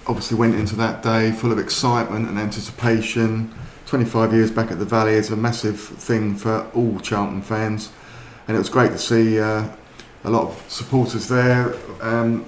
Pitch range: 110-125 Hz